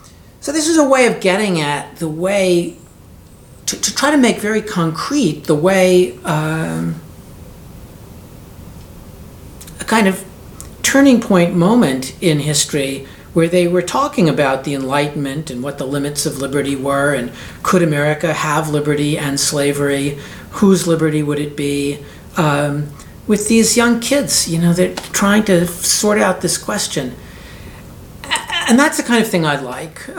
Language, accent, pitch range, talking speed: English, American, 140-205 Hz, 150 wpm